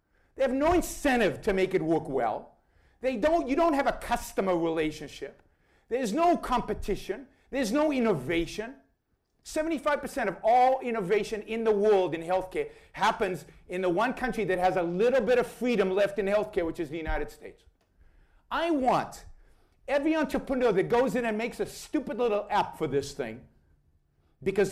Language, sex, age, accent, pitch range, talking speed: English, male, 50-69, American, 185-265 Hz, 165 wpm